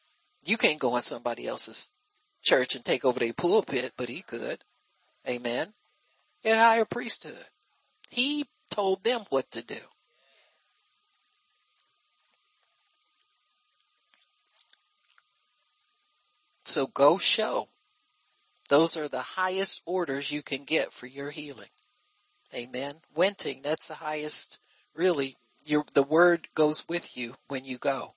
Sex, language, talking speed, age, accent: male, English, 115 wpm, 60-79, American